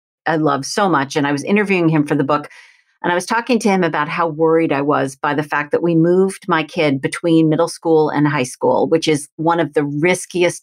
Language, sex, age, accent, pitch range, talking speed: English, female, 40-59, American, 155-210 Hz, 245 wpm